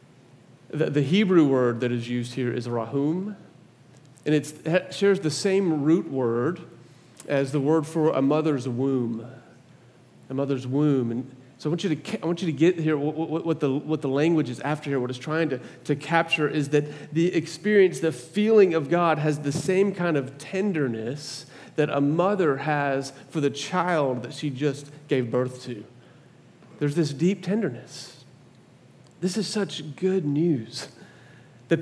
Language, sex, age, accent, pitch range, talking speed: English, male, 40-59, American, 135-170 Hz, 175 wpm